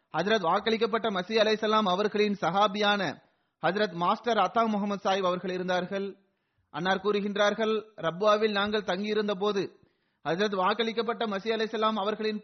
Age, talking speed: 30-49, 105 wpm